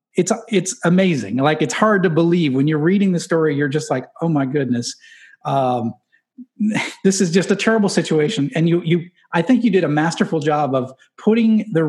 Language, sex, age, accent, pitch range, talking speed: English, male, 40-59, American, 145-180 Hz, 195 wpm